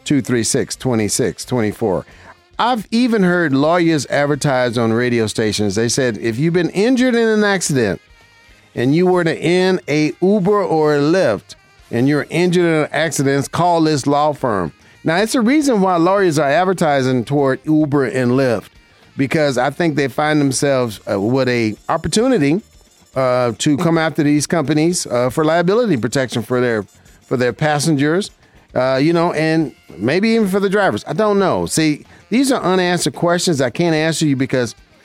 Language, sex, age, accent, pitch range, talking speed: English, male, 50-69, American, 125-175 Hz, 175 wpm